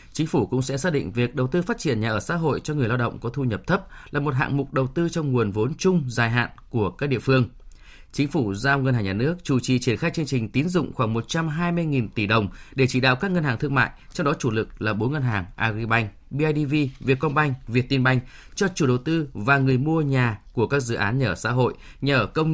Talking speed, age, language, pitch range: 260 wpm, 20-39, Vietnamese, 115-150 Hz